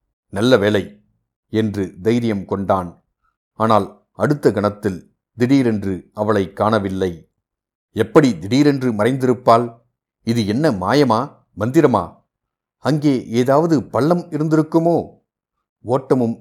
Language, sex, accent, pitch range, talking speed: Tamil, male, native, 100-120 Hz, 85 wpm